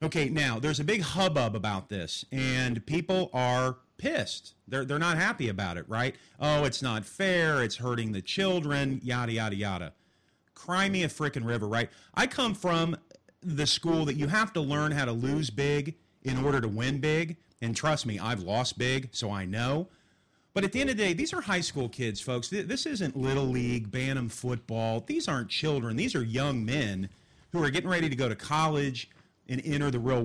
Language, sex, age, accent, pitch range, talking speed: English, male, 40-59, American, 115-165 Hz, 200 wpm